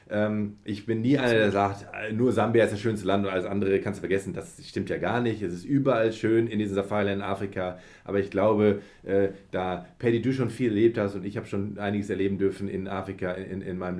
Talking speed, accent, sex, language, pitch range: 225 wpm, German, male, German, 100-120 Hz